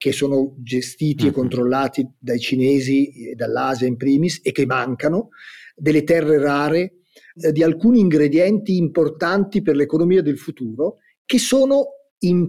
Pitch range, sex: 135-185 Hz, male